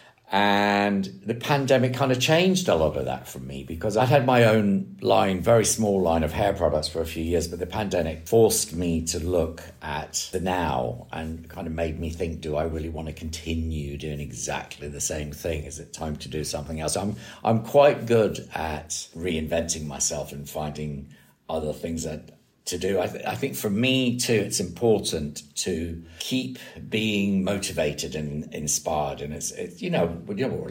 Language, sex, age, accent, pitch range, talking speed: English, male, 50-69, British, 75-110 Hz, 190 wpm